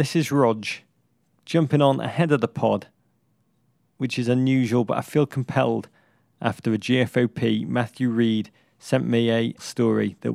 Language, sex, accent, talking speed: English, male, British, 150 wpm